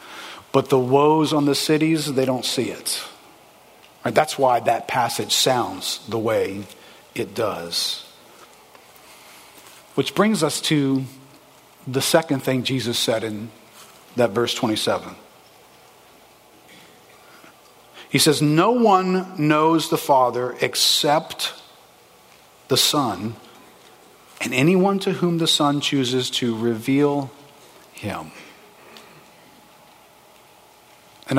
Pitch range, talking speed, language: 120-145 Hz, 100 wpm, English